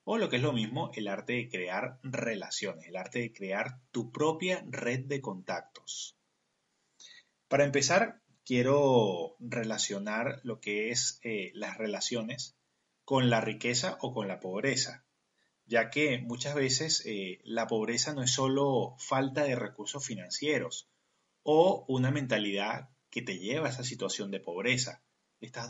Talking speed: 145 wpm